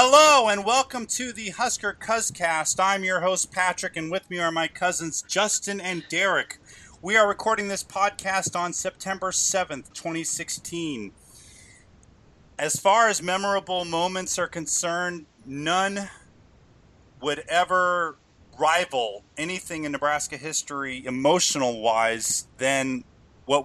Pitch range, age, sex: 130-175 Hz, 30-49, male